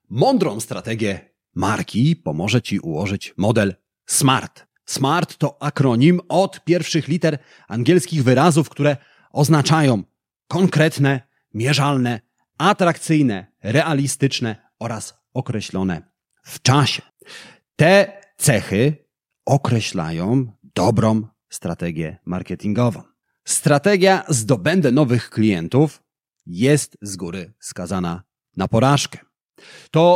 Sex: male